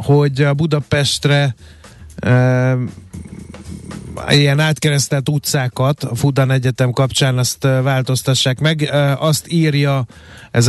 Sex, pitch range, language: male, 125-145 Hz, Hungarian